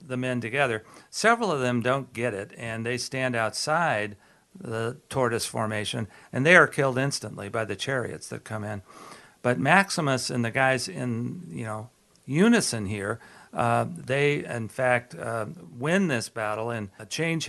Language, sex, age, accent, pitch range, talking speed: English, male, 60-79, American, 115-150 Hz, 165 wpm